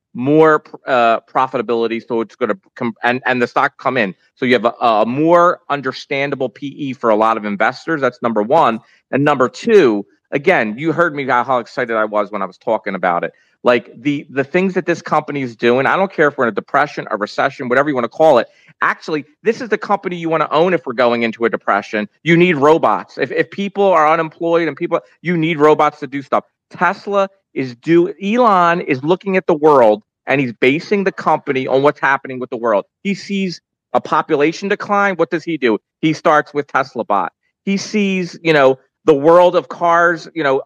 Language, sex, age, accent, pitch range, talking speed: English, male, 30-49, American, 135-180 Hz, 215 wpm